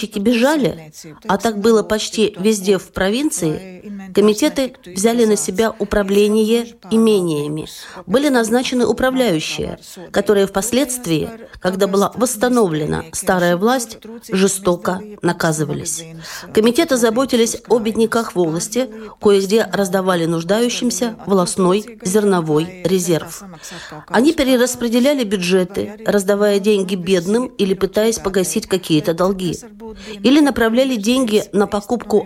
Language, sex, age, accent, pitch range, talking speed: Russian, female, 40-59, native, 185-230 Hz, 100 wpm